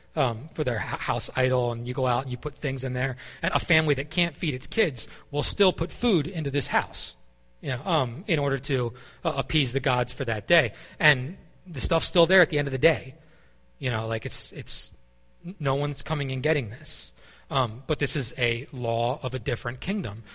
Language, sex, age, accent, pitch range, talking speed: English, male, 30-49, American, 125-155 Hz, 220 wpm